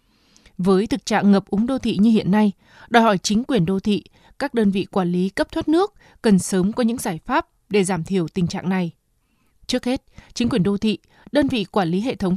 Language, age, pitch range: Vietnamese, 20-39, 190-250 Hz